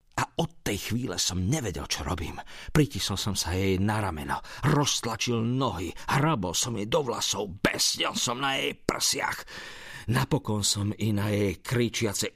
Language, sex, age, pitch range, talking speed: Slovak, male, 50-69, 100-135 Hz, 155 wpm